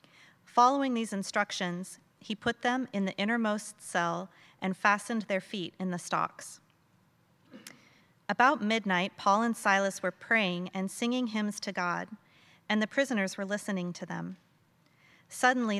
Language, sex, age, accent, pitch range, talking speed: English, female, 40-59, American, 180-215 Hz, 140 wpm